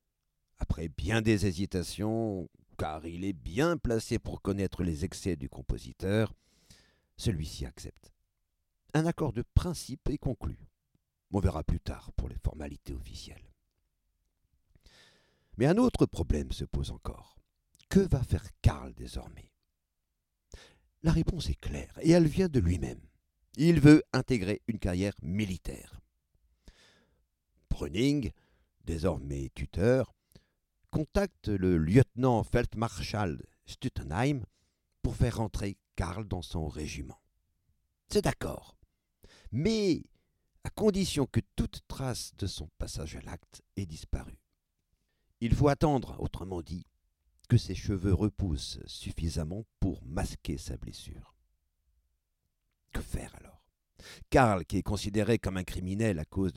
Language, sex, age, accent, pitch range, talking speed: French, male, 60-79, French, 75-110 Hz, 120 wpm